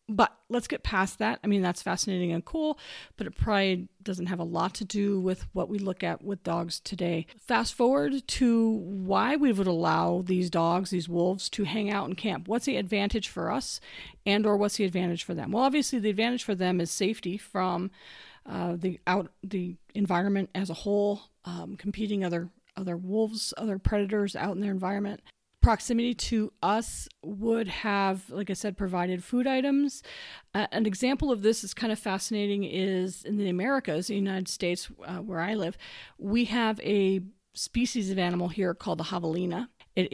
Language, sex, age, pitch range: English, female, 40-59, 185-220 Hz